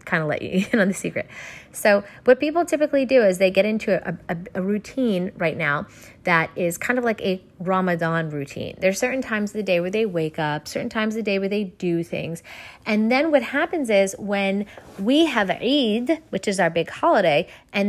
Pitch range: 180-235 Hz